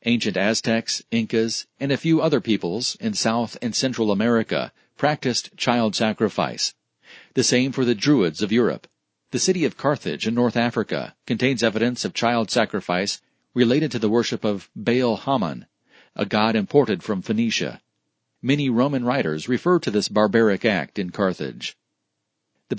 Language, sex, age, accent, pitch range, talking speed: English, male, 40-59, American, 110-130 Hz, 155 wpm